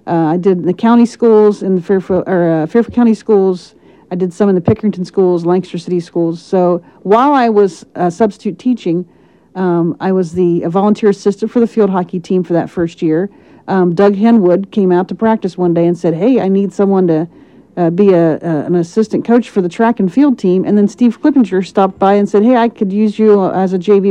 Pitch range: 180-210 Hz